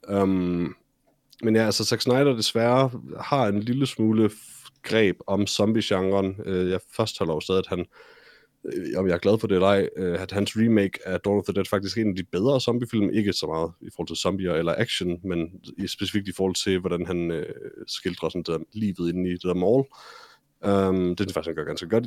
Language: Danish